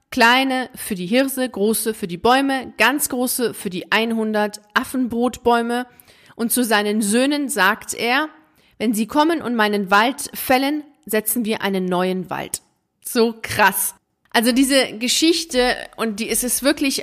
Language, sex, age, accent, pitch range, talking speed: German, female, 30-49, German, 210-255 Hz, 150 wpm